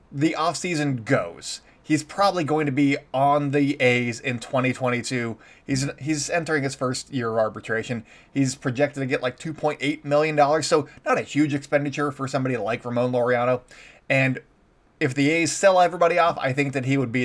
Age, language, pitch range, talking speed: 20-39, English, 130-160 Hz, 175 wpm